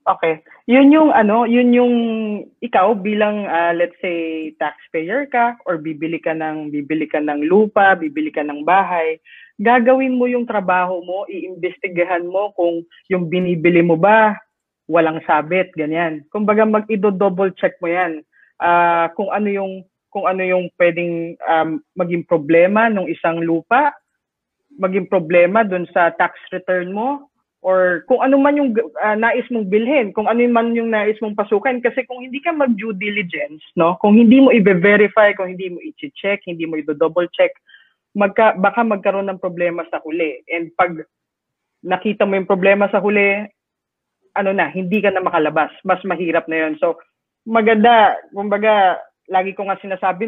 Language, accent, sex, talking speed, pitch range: English, Filipino, female, 160 wpm, 170-225 Hz